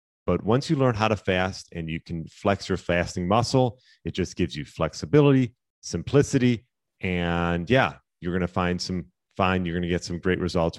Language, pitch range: English, 90-125 Hz